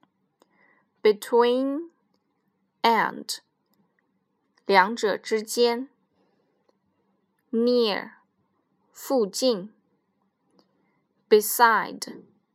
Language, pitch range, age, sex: Chinese, 205-255 Hz, 10-29, female